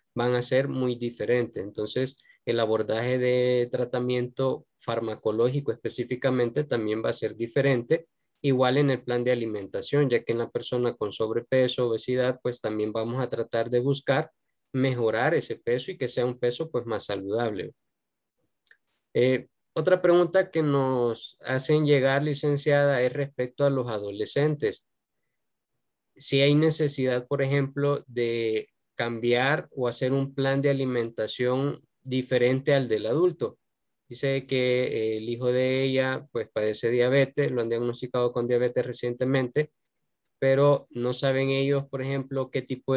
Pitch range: 120-135 Hz